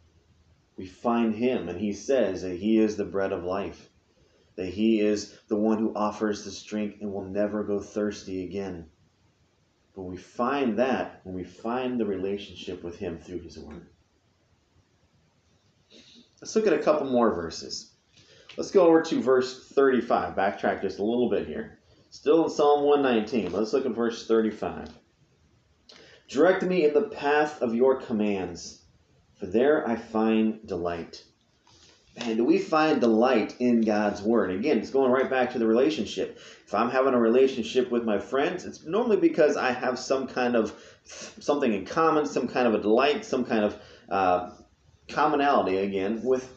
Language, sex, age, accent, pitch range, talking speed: English, male, 30-49, American, 100-130 Hz, 170 wpm